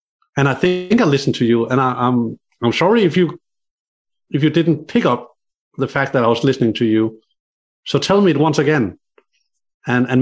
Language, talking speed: English, 205 wpm